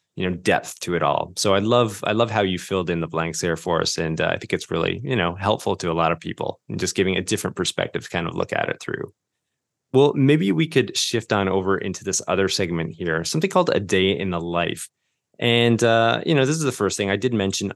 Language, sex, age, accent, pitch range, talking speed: English, male, 20-39, American, 90-110 Hz, 265 wpm